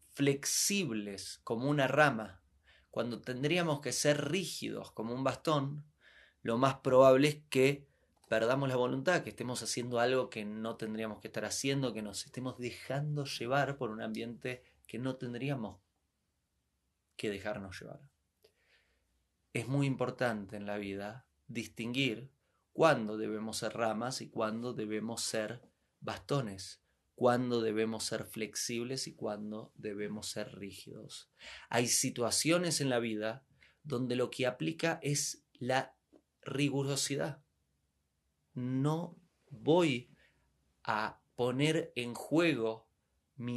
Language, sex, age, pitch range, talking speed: Spanish, male, 20-39, 110-135 Hz, 120 wpm